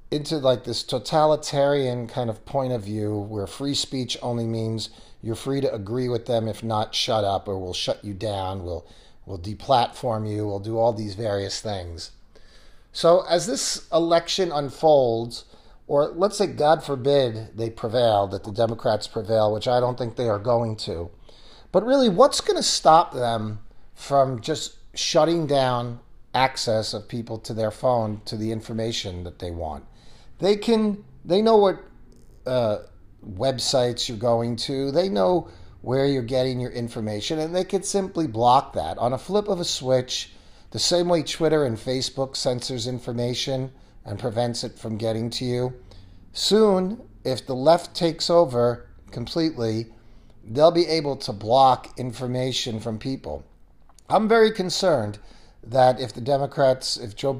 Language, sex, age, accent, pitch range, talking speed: English, male, 40-59, American, 110-145 Hz, 160 wpm